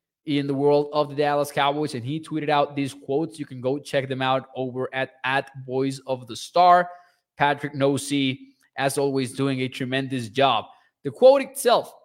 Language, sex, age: English, male, 20-39